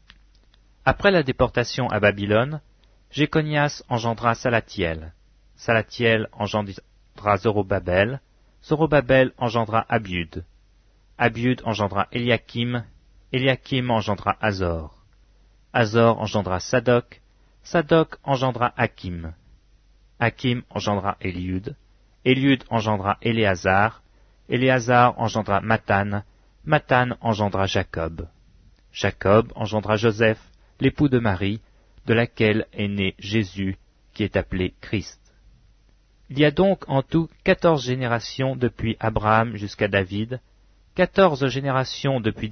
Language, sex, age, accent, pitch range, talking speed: French, male, 40-59, French, 100-130 Hz, 95 wpm